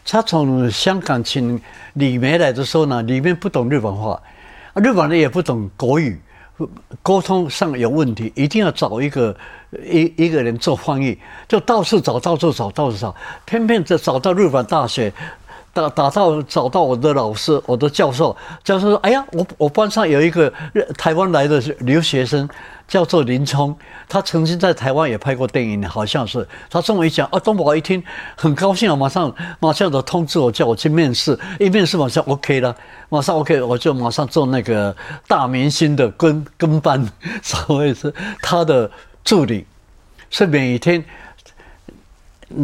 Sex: male